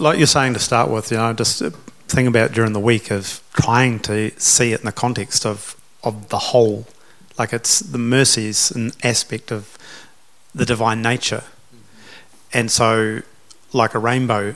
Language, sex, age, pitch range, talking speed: English, male, 40-59, 110-130 Hz, 175 wpm